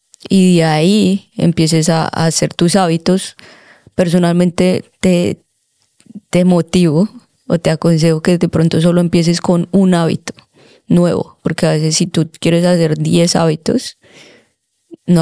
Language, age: Spanish, 20-39